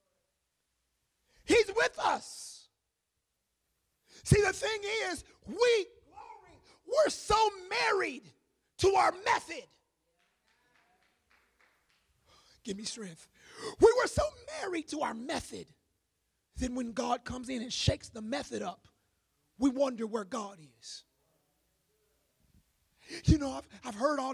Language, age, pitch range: English, 30-49, 255-345 Hz